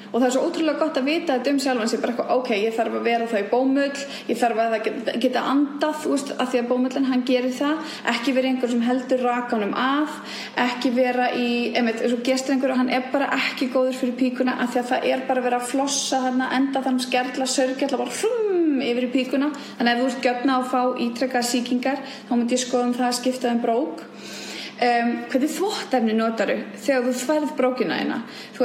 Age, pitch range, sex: 20-39, 240-275 Hz, female